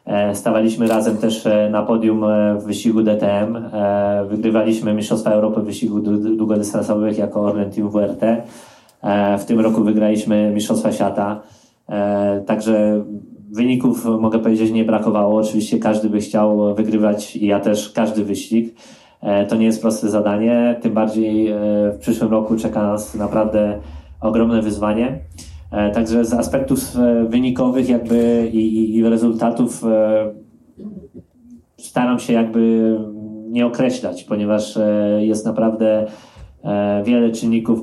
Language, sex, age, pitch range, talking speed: Polish, male, 20-39, 105-115 Hz, 125 wpm